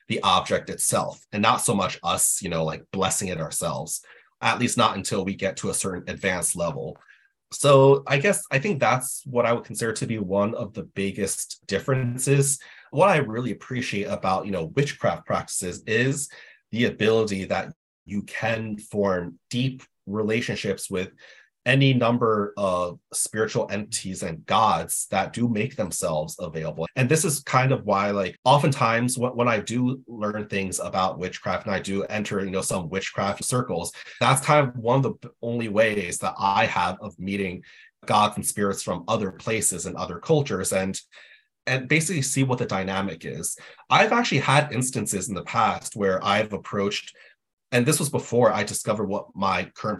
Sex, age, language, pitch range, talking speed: male, 30-49, English, 100-130 Hz, 175 wpm